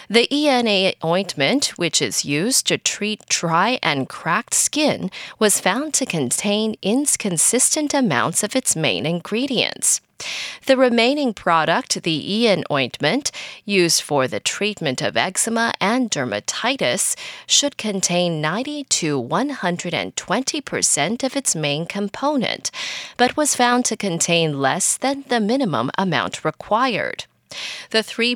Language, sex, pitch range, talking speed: English, female, 175-260 Hz, 125 wpm